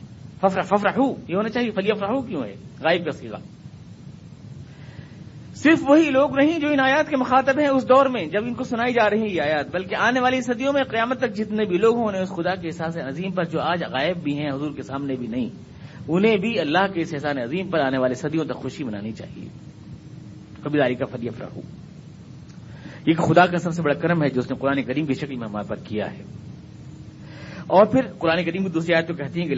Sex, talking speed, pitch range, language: male, 205 wpm, 145-205 Hz, Urdu